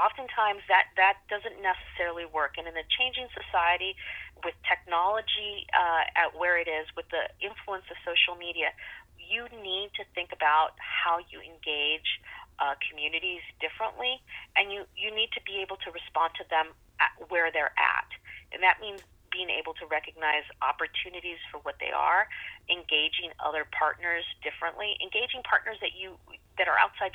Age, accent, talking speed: 30-49, American, 160 wpm